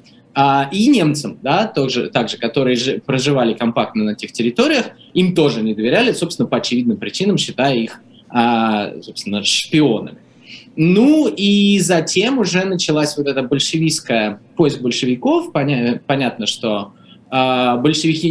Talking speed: 115 wpm